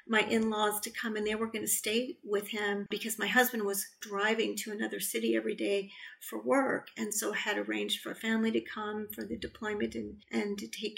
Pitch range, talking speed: 200-220 Hz, 220 wpm